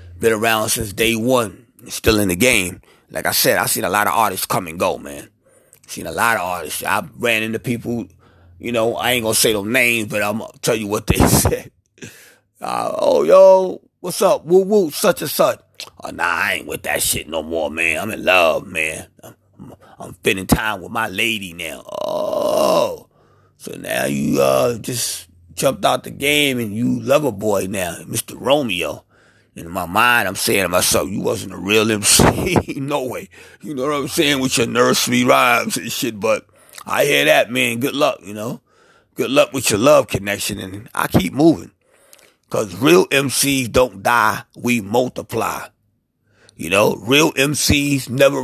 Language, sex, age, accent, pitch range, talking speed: English, male, 30-49, American, 100-130 Hz, 190 wpm